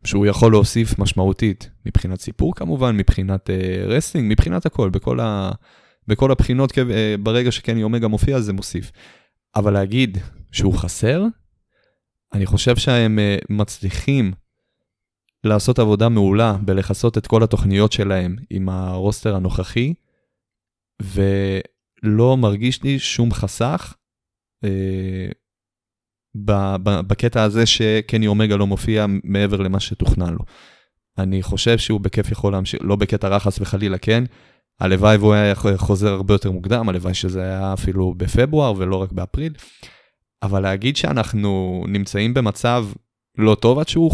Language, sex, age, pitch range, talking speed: Hebrew, male, 20-39, 95-115 Hz, 130 wpm